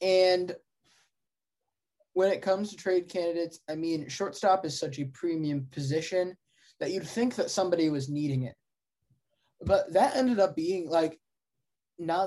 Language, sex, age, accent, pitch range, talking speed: English, male, 20-39, American, 145-170 Hz, 145 wpm